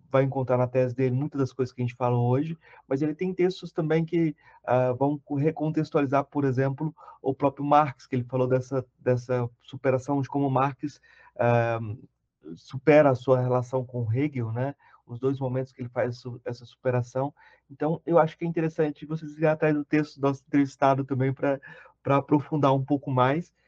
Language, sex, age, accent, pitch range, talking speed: Portuguese, male, 30-49, Brazilian, 125-150 Hz, 185 wpm